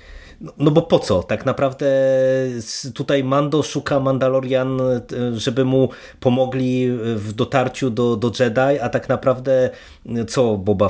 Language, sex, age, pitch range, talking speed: Polish, male, 30-49, 120-145 Hz, 130 wpm